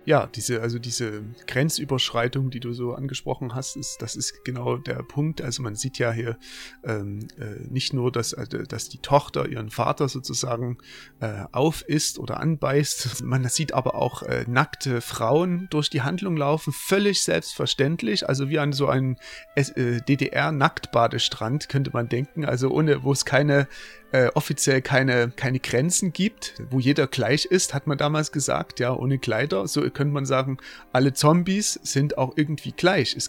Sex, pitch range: male, 125-150 Hz